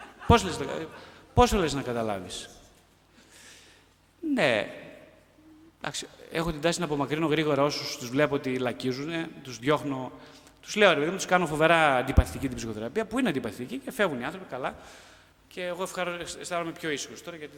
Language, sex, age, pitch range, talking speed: Greek, male, 30-49, 130-205 Hz, 160 wpm